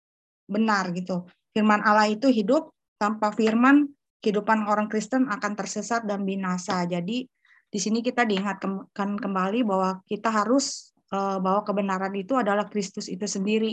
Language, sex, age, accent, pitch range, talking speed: Indonesian, female, 20-39, native, 200-230 Hz, 140 wpm